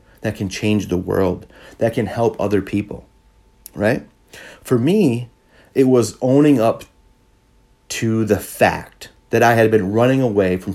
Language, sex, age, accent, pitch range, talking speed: English, male, 30-49, American, 95-125 Hz, 150 wpm